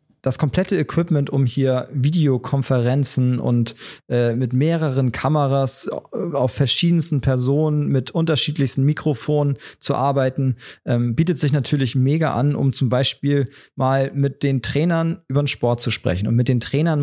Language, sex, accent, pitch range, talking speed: German, male, German, 125-150 Hz, 145 wpm